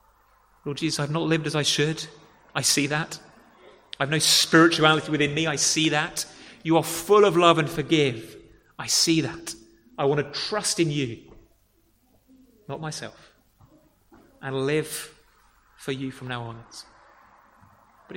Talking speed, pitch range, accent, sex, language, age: 150 wpm, 115-160 Hz, British, male, English, 30-49